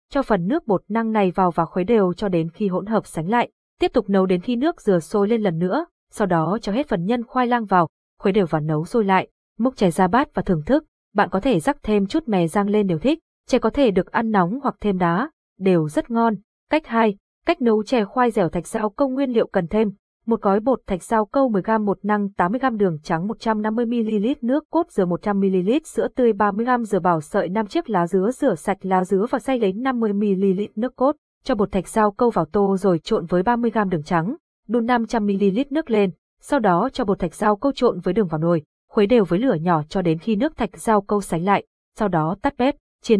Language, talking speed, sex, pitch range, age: Vietnamese, 240 wpm, female, 190-240 Hz, 20-39